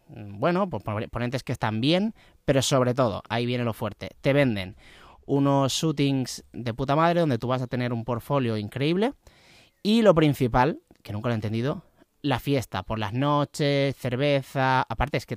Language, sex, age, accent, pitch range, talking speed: Spanish, male, 30-49, Spanish, 115-150 Hz, 180 wpm